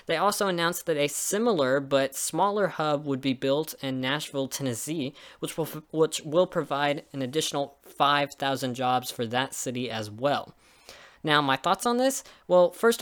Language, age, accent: English, 10-29, American